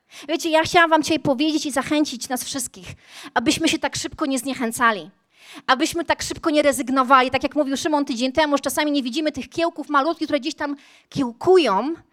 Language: Polish